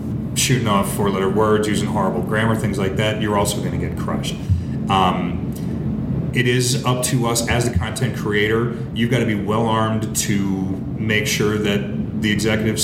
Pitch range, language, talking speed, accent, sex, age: 105-130 Hz, English, 175 wpm, American, male, 30-49